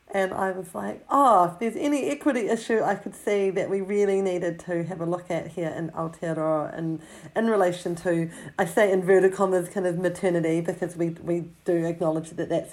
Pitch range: 165-195 Hz